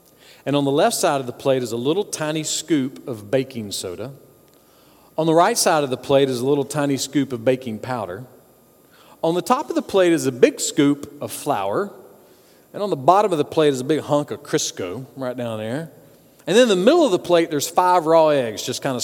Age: 40-59